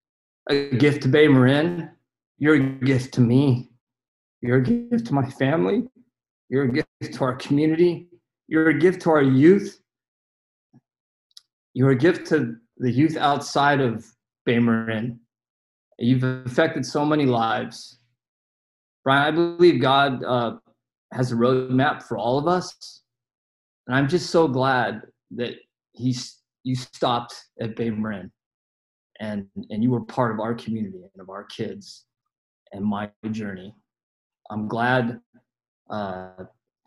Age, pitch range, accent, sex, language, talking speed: 20-39, 115-150 Hz, American, male, English, 140 wpm